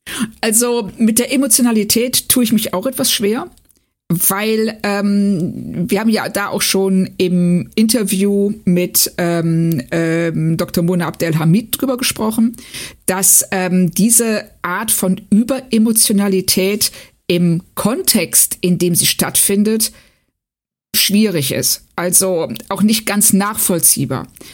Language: German